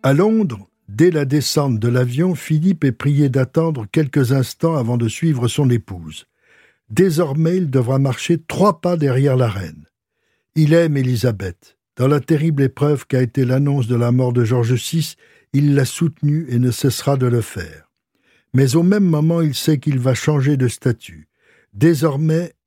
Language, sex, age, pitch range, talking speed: French, male, 60-79, 125-160 Hz, 170 wpm